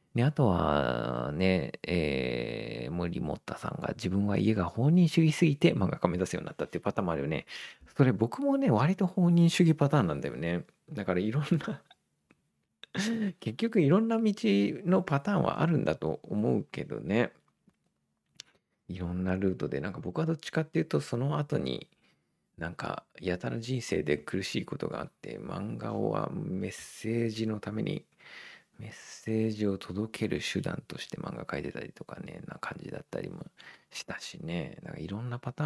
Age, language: 40-59, Japanese